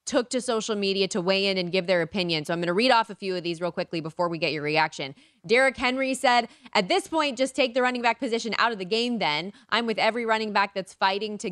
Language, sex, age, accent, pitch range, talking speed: English, female, 20-39, American, 175-230 Hz, 275 wpm